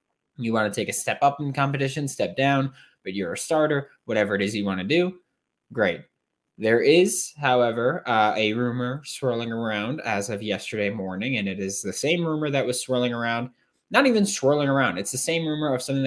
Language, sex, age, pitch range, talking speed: English, male, 20-39, 110-155 Hz, 205 wpm